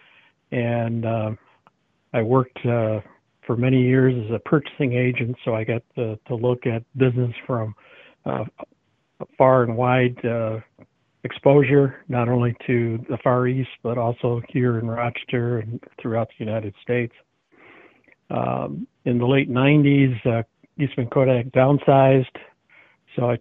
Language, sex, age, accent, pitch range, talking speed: English, male, 60-79, American, 120-135 Hz, 140 wpm